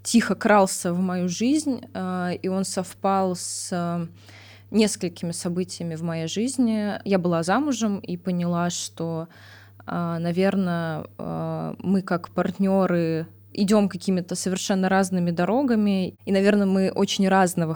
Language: Russian